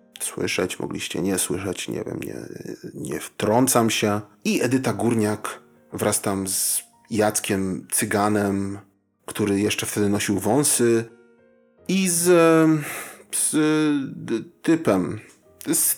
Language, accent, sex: Polish, native, male